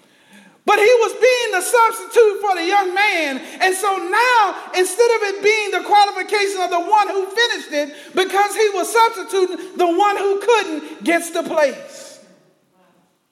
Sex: male